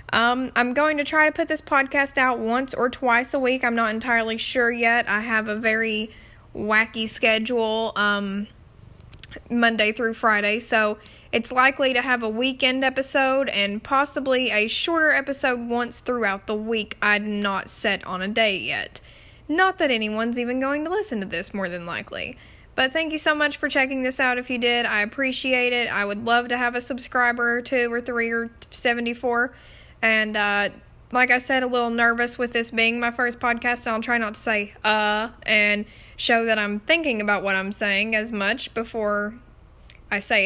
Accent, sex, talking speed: American, female, 195 wpm